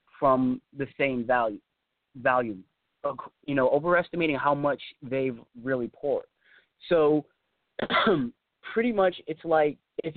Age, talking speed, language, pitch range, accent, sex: 20-39, 105 wpm, English, 135-165 Hz, American, male